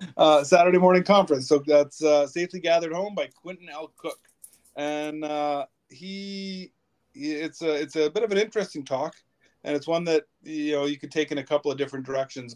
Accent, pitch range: American, 130-150 Hz